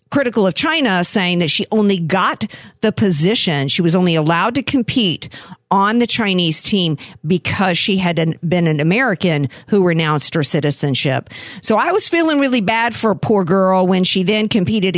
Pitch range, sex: 160-205 Hz, female